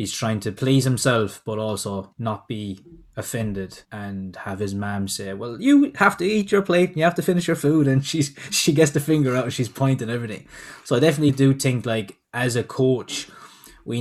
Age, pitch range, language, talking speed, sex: 20-39, 110-135 Hz, English, 215 wpm, male